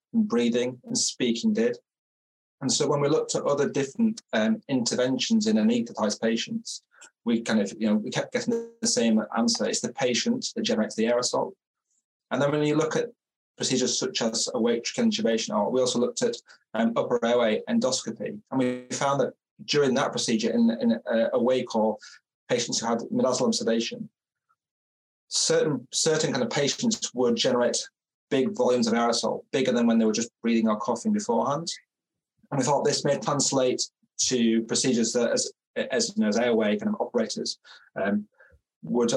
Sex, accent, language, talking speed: male, British, English, 175 wpm